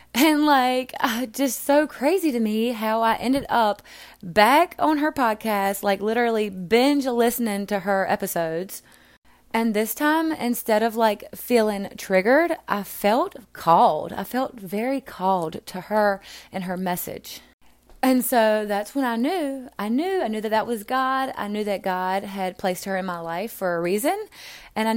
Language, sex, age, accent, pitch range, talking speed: English, female, 20-39, American, 195-255 Hz, 175 wpm